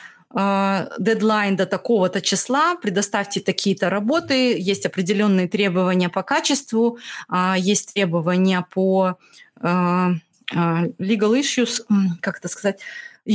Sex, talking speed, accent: female, 95 wpm, native